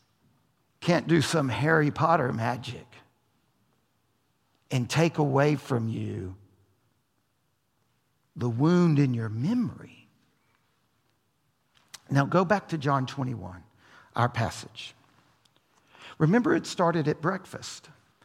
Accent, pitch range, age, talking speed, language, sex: American, 115-160 Hz, 60-79, 95 wpm, English, male